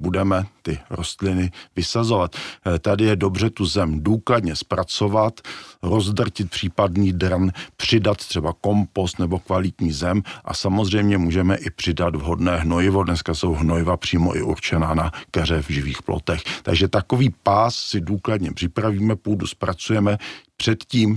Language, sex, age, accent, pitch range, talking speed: Czech, male, 50-69, native, 85-105 Hz, 135 wpm